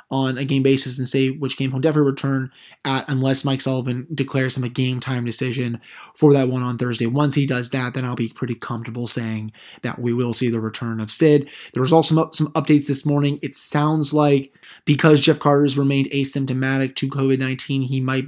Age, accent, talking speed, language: 20-39, American, 215 wpm, English